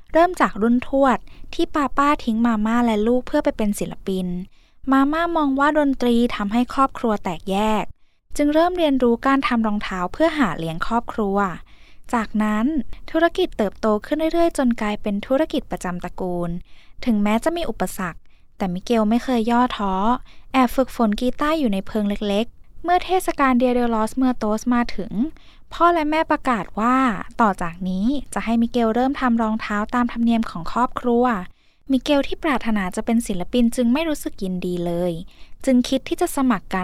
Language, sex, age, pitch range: Thai, female, 10-29, 205-275 Hz